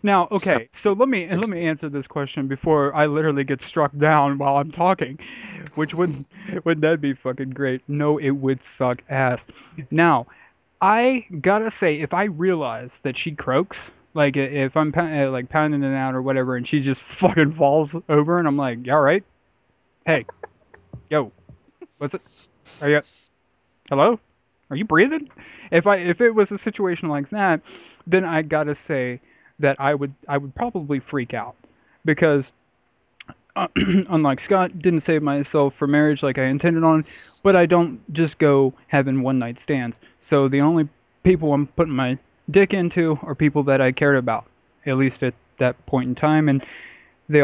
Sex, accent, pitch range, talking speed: male, American, 135-170 Hz, 175 wpm